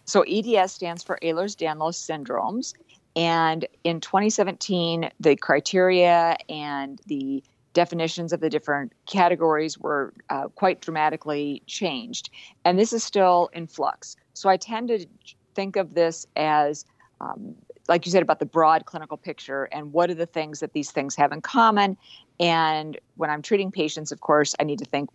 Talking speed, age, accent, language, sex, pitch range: 160 wpm, 50-69, American, English, female, 150-180 Hz